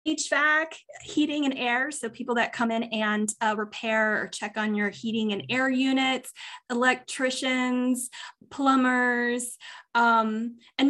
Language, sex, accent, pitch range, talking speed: English, female, American, 220-275 Hz, 130 wpm